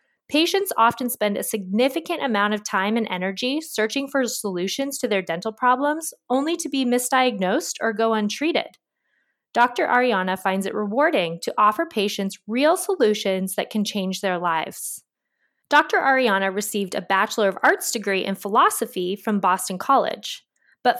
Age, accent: 20-39, American